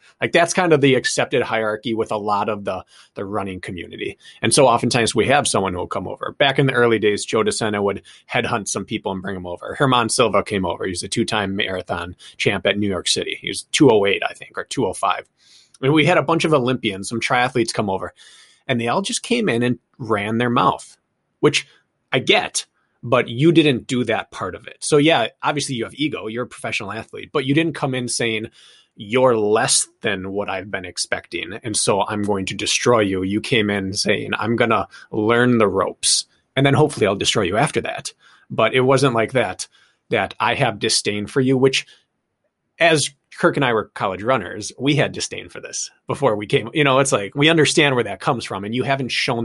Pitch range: 105-135 Hz